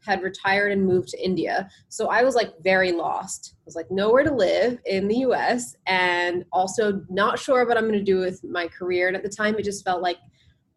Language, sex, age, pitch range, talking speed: English, female, 20-39, 175-220 Hz, 235 wpm